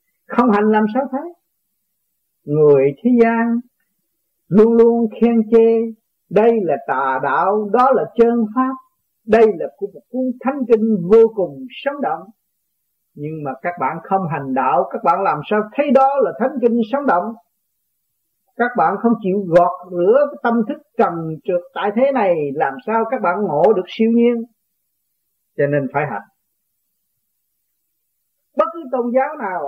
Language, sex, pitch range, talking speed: Vietnamese, male, 190-240 Hz, 155 wpm